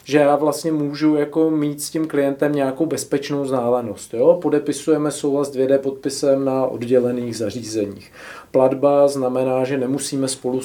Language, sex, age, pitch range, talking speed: Czech, male, 40-59, 130-145 Hz, 145 wpm